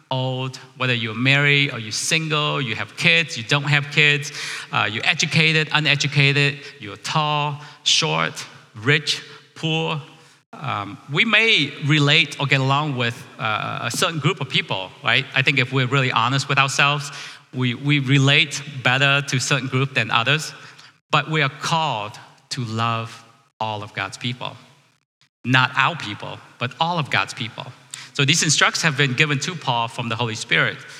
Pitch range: 125-150 Hz